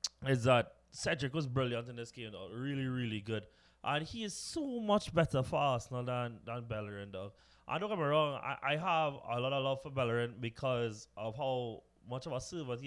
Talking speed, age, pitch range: 215 wpm, 20-39, 125-165 Hz